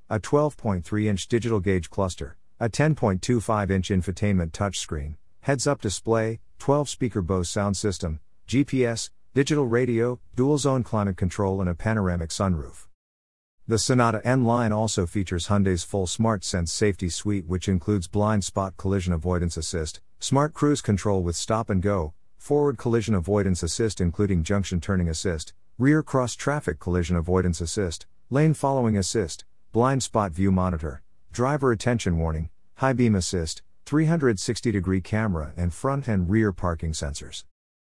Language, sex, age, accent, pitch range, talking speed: English, male, 50-69, American, 90-115 Hz, 145 wpm